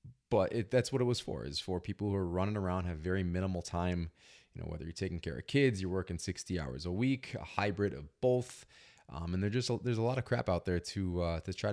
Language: English